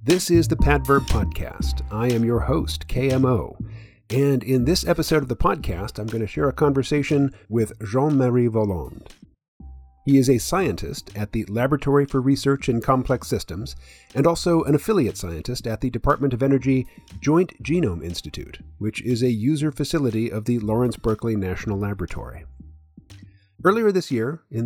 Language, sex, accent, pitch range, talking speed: English, male, American, 115-150 Hz, 160 wpm